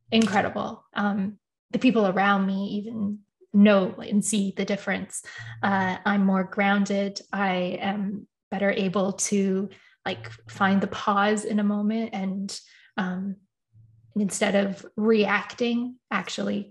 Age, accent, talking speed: 20-39, American, 120 wpm